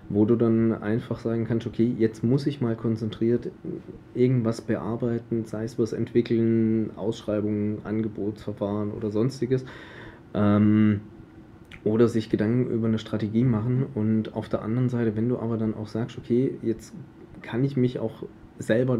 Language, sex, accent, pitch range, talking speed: German, male, German, 110-120 Hz, 150 wpm